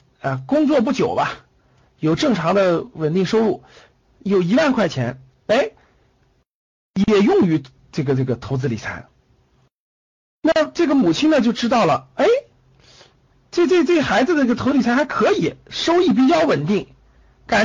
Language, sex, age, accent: Chinese, male, 50-69, native